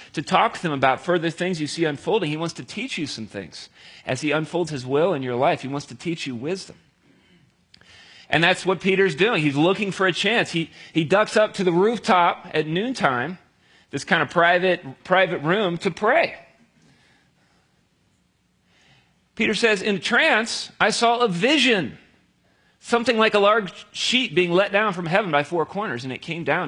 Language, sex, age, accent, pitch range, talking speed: English, male, 40-59, American, 155-195 Hz, 185 wpm